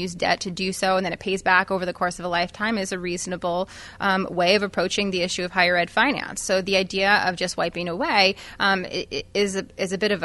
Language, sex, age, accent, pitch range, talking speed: English, female, 20-39, American, 185-215 Hz, 250 wpm